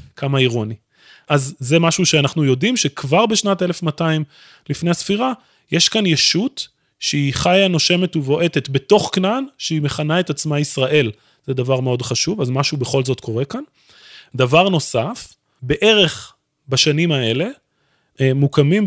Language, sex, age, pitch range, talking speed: Hebrew, male, 20-39, 140-180 Hz, 135 wpm